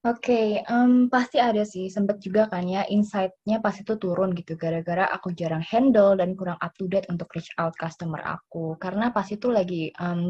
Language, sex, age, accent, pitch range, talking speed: Indonesian, female, 20-39, native, 175-220 Hz, 200 wpm